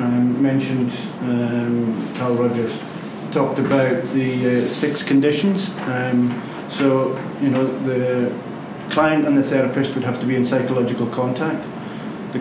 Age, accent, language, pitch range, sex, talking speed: 30-49, British, English, 125-140 Hz, male, 135 wpm